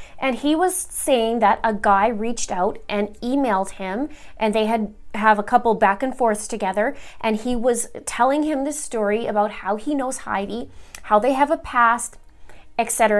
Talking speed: 185 wpm